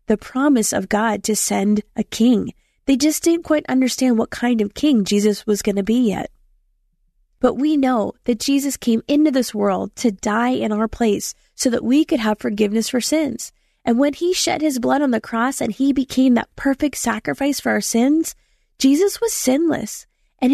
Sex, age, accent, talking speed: female, 20-39, American, 195 wpm